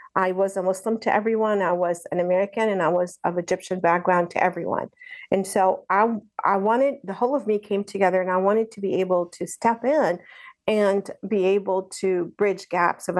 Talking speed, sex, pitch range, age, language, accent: 205 wpm, female, 175-200 Hz, 50-69, English, American